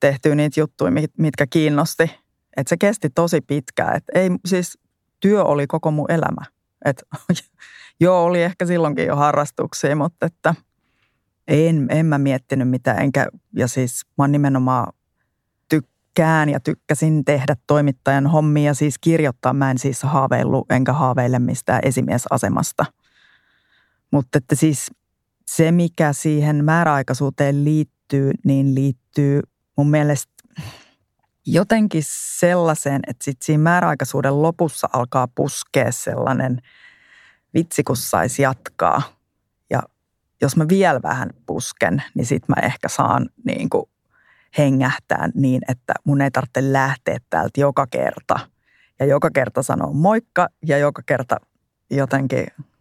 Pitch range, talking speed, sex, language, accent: 135-160 Hz, 125 wpm, female, Finnish, native